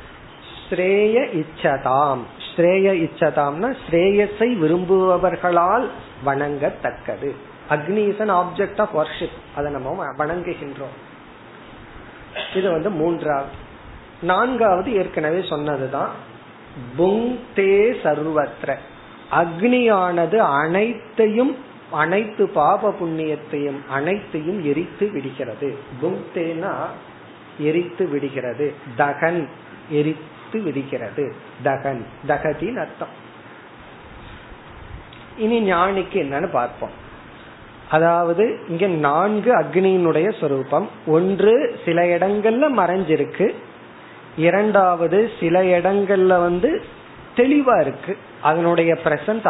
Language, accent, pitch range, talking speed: Tamil, native, 150-200 Hz, 40 wpm